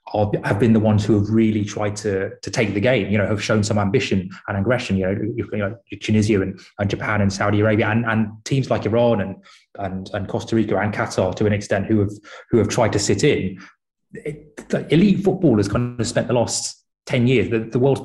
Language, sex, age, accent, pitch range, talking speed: English, male, 20-39, British, 105-135 Hz, 235 wpm